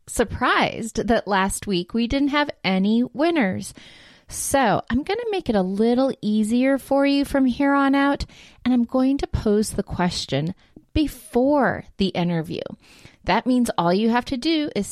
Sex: female